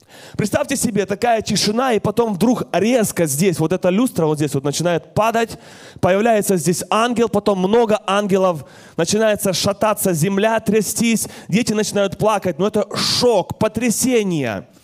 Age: 20-39